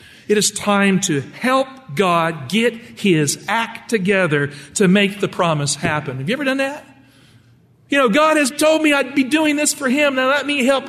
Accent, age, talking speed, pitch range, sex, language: American, 50-69, 200 wpm, 155-230 Hz, male, English